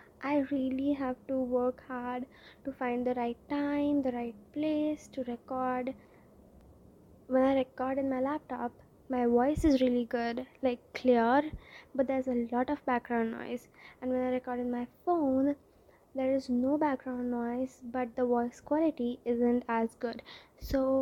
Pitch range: 245-275 Hz